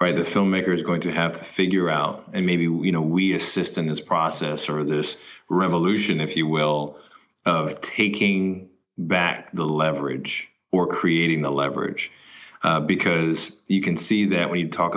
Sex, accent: male, American